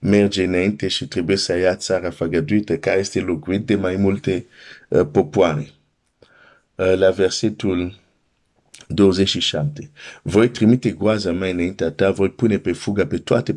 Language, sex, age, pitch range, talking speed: Romanian, male, 50-69, 85-110 Hz, 140 wpm